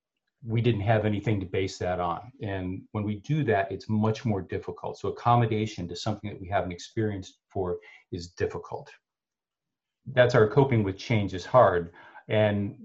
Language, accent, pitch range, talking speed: English, American, 95-115 Hz, 170 wpm